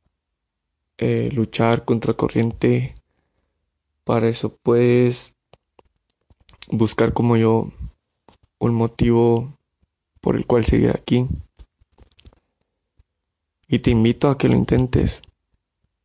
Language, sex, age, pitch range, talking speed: Spanish, male, 20-39, 80-120 Hz, 90 wpm